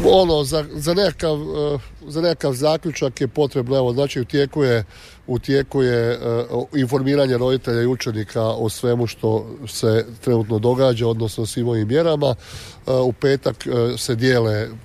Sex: male